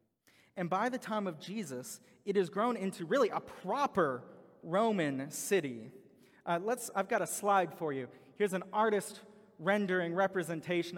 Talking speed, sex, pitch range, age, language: 155 wpm, male, 150-190 Hz, 30-49, English